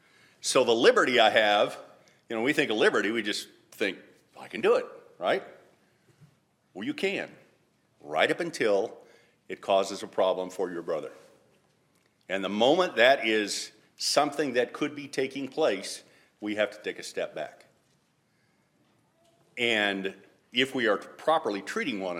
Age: 50-69